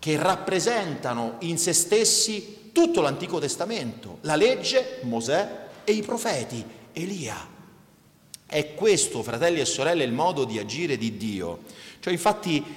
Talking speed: 130 wpm